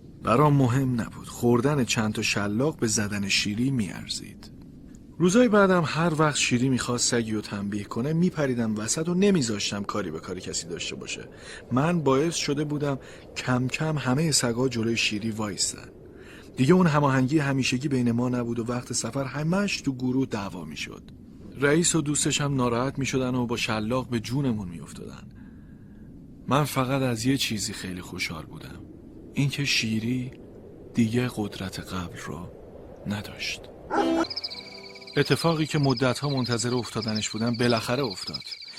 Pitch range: 115-145 Hz